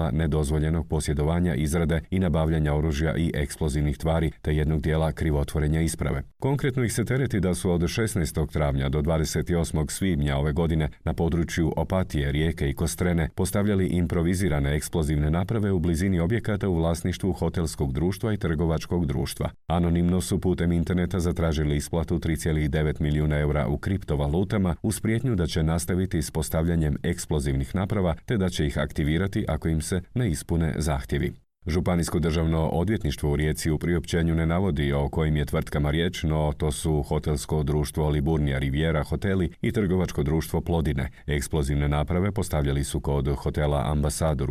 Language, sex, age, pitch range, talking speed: Croatian, male, 40-59, 75-90 Hz, 150 wpm